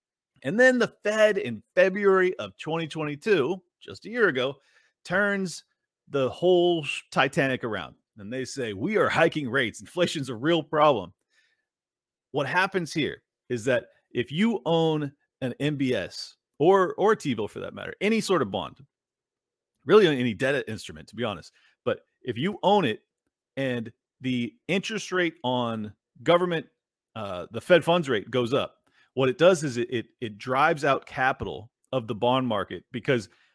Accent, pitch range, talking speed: American, 120-170 Hz, 160 wpm